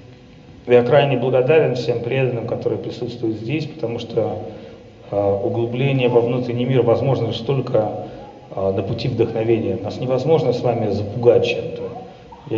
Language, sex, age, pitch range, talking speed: Russian, male, 40-59, 120-145 Hz, 140 wpm